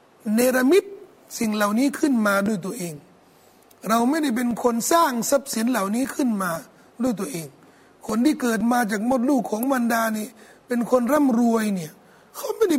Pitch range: 225-295 Hz